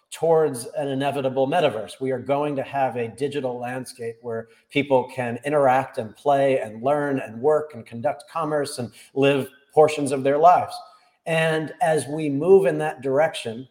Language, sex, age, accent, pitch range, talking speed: English, male, 40-59, American, 120-145 Hz, 165 wpm